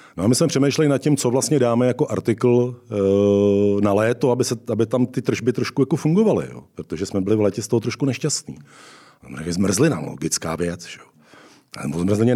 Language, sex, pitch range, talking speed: Czech, male, 100-125 Hz, 195 wpm